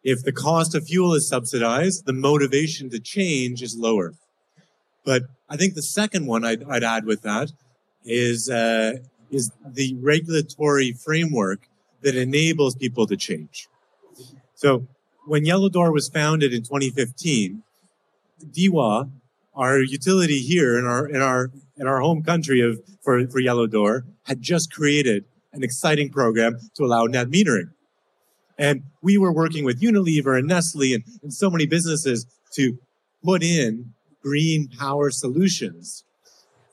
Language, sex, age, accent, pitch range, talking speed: English, male, 30-49, American, 130-160 Hz, 145 wpm